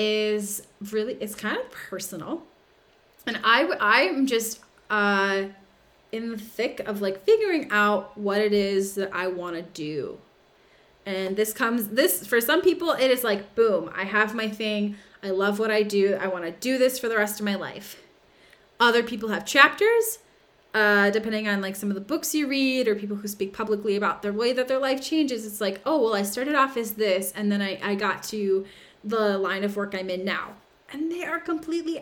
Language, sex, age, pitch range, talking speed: English, female, 20-39, 195-240 Hz, 200 wpm